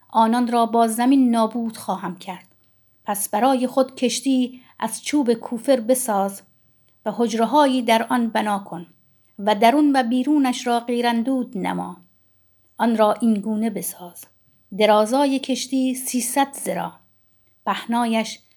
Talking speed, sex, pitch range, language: 120 wpm, female, 195-245 Hz, Persian